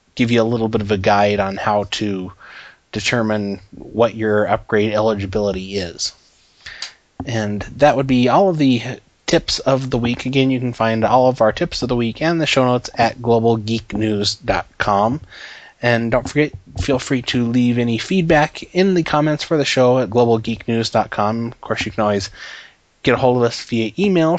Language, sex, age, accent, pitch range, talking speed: English, male, 20-39, American, 110-130 Hz, 180 wpm